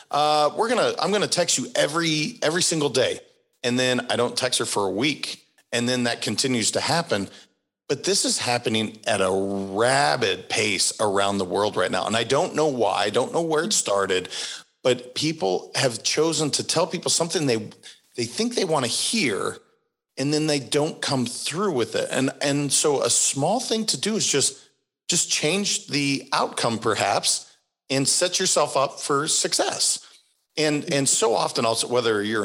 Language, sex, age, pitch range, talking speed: English, male, 40-59, 110-165 Hz, 190 wpm